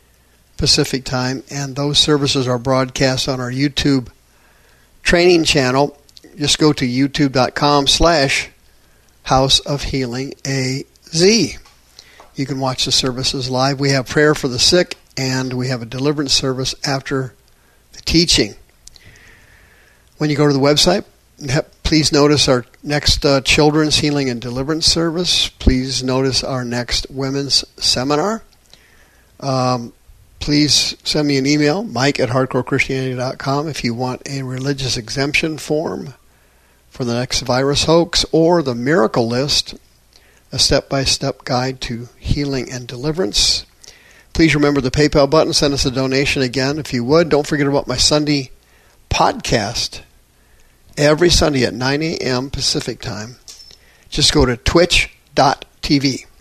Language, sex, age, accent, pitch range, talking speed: English, male, 50-69, American, 125-150 Hz, 135 wpm